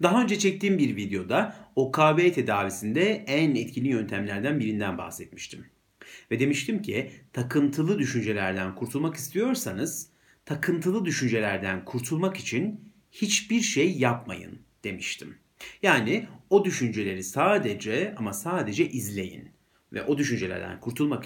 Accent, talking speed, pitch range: native, 105 wpm, 105-165 Hz